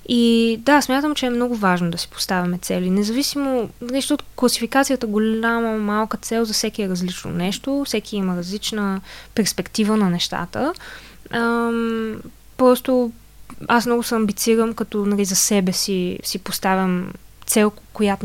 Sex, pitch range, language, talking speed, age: female, 190-235 Hz, Bulgarian, 140 wpm, 20-39